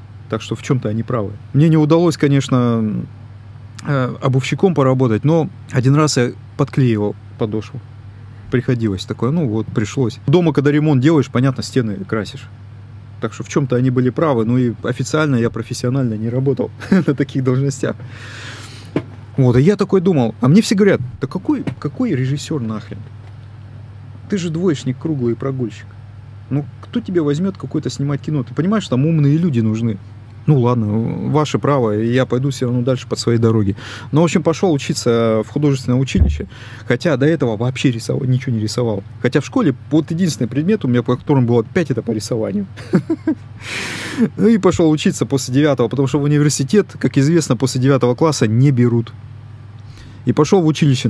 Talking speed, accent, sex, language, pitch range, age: 170 wpm, native, male, Russian, 115-150 Hz, 20-39